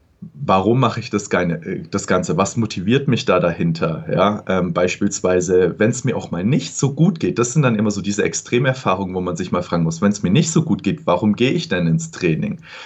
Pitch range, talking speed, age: 95-135 Hz, 225 wpm, 30-49